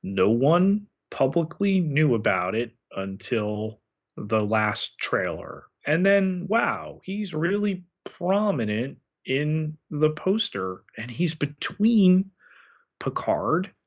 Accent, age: American, 30-49